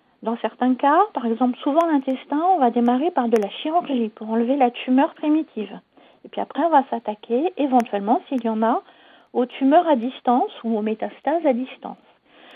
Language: French